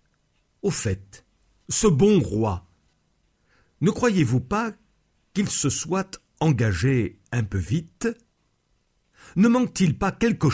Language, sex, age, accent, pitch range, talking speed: French, male, 60-79, French, 110-175 Hz, 110 wpm